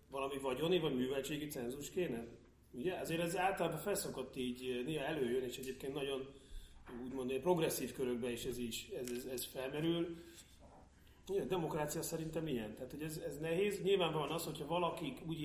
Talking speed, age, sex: 160 wpm, 30-49, male